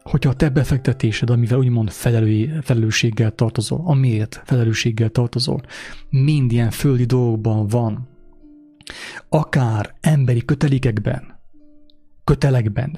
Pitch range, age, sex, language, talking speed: 110-135 Hz, 30-49, male, English, 95 wpm